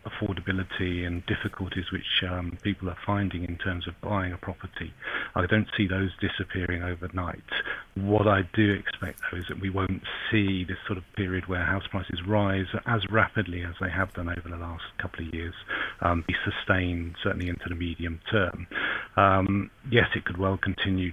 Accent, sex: British, male